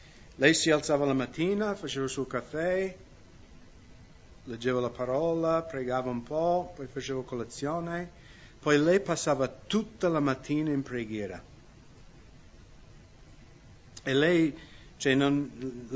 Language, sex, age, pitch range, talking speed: English, male, 50-69, 120-145 Hz, 110 wpm